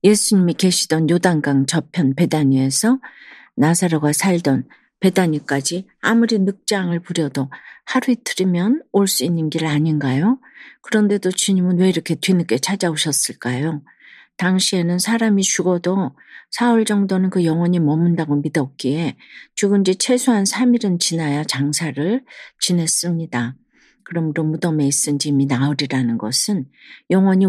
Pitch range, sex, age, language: 150-205 Hz, female, 50-69, Korean